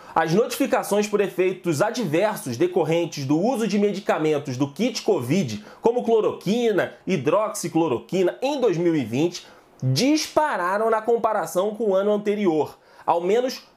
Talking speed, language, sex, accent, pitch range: 120 wpm, Portuguese, male, Brazilian, 170-235 Hz